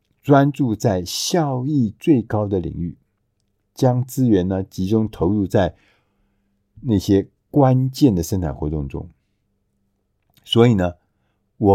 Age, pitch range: 50-69, 95-130 Hz